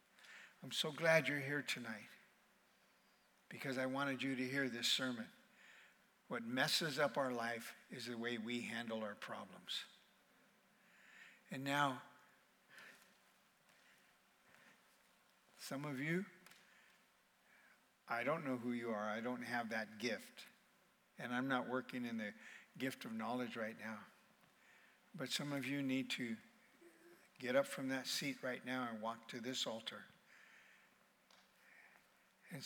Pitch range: 115-140 Hz